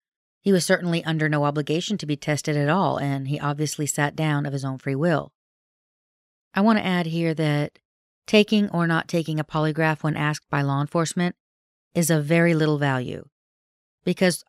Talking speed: 180 wpm